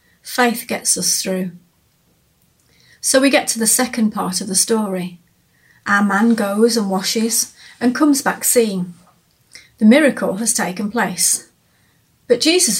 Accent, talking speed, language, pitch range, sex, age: British, 140 wpm, English, 185-230 Hz, female, 30-49